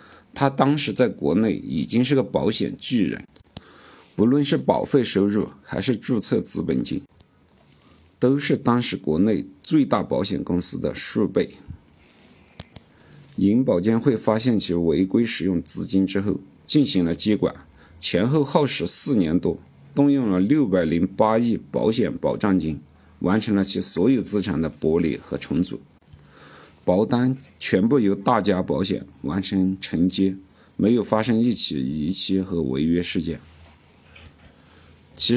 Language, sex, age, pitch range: Chinese, male, 50-69, 85-115 Hz